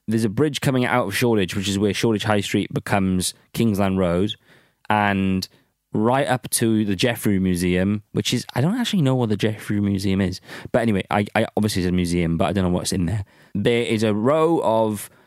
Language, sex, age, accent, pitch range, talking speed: English, male, 20-39, British, 100-140 Hz, 210 wpm